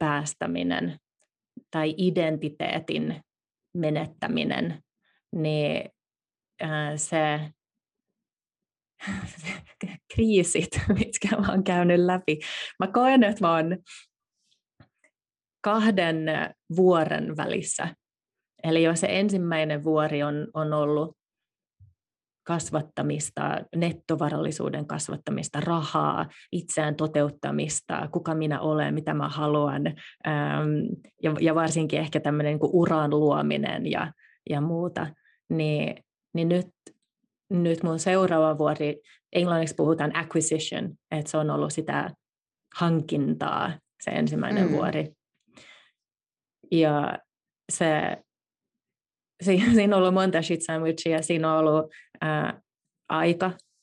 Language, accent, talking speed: Finnish, native, 85 wpm